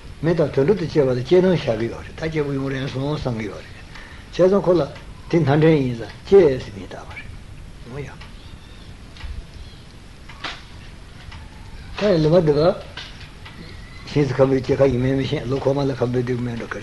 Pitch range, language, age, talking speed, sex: 125-150 Hz, Italian, 60-79, 45 wpm, male